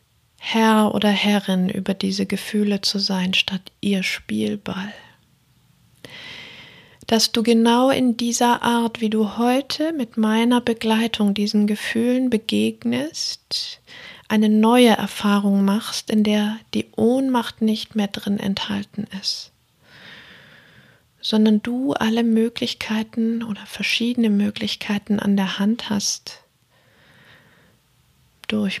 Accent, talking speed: German, 105 wpm